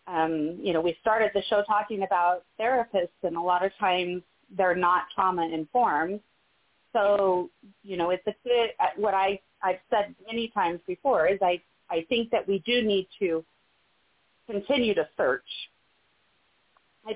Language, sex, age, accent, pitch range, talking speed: English, female, 30-49, American, 175-235 Hz, 160 wpm